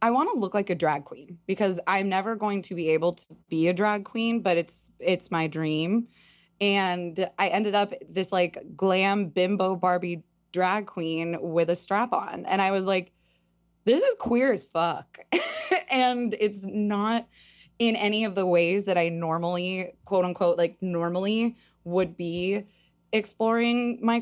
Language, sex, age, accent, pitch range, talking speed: English, female, 20-39, American, 170-210 Hz, 170 wpm